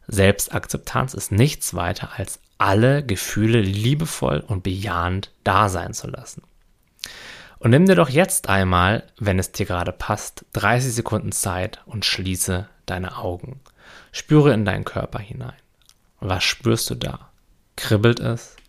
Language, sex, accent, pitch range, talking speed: German, male, German, 95-125 Hz, 140 wpm